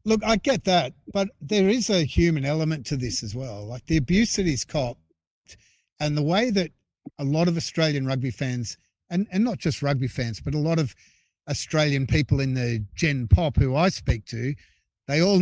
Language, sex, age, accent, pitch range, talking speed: English, male, 50-69, Australian, 130-175 Hz, 200 wpm